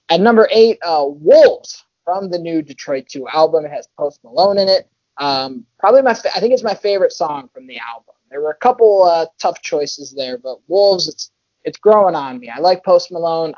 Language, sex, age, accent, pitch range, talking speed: English, male, 20-39, American, 140-190 Hz, 215 wpm